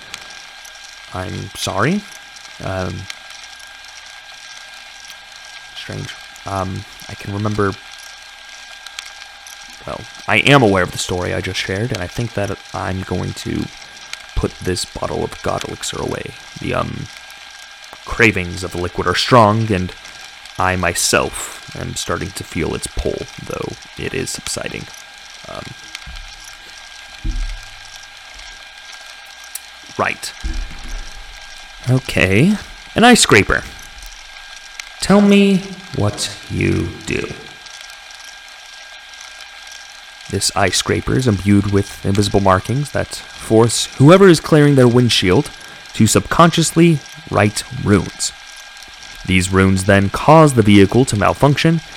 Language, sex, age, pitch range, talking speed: English, male, 30-49, 95-130 Hz, 105 wpm